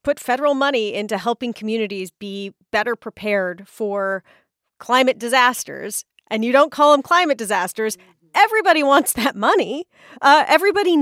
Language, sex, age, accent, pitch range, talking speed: English, female, 30-49, American, 205-270 Hz, 135 wpm